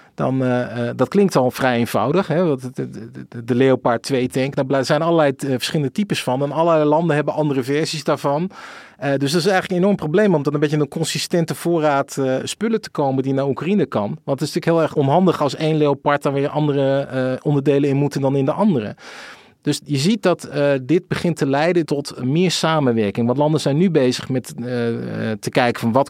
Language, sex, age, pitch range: Dutch, male, 40-59, 125-155 Hz